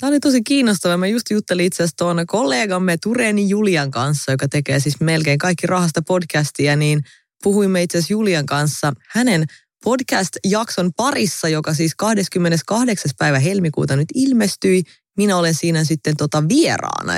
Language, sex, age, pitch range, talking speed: English, female, 20-39, 150-195 Hz, 145 wpm